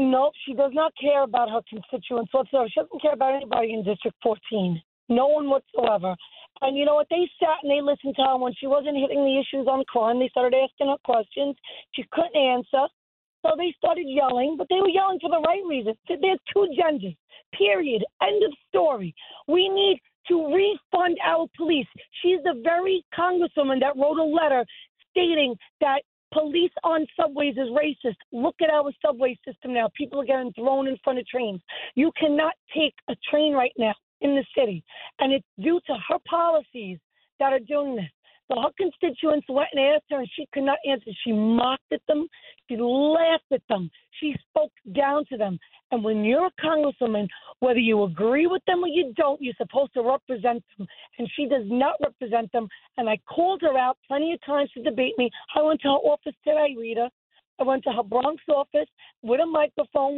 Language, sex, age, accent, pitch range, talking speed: English, female, 40-59, American, 250-310 Hz, 195 wpm